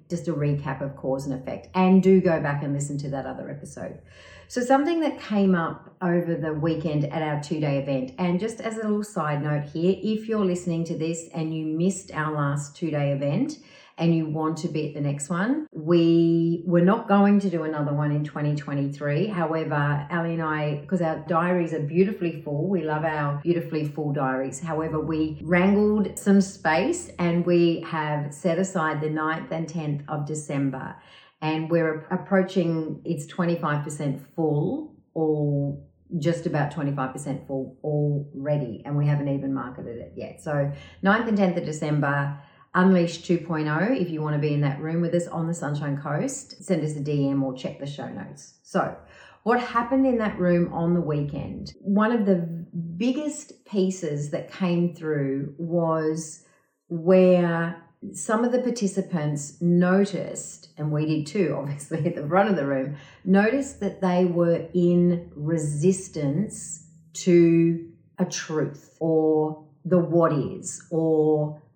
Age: 40-59